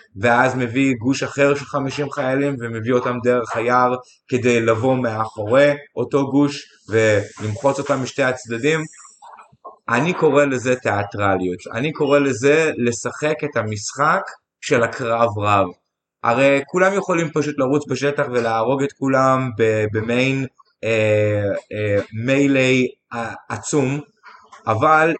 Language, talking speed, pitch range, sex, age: Hebrew, 115 wpm, 110-140 Hz, male, 30-49